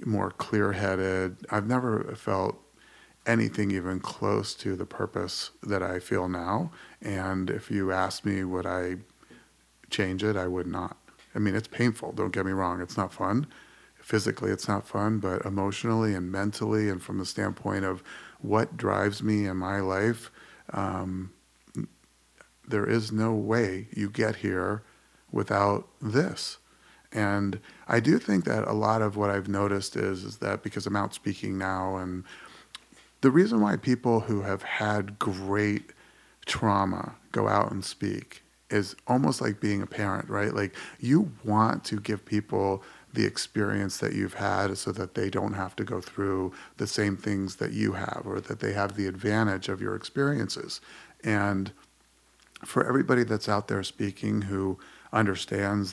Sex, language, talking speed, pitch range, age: male, English, 160 wpm, 95-105 Hz, 40-59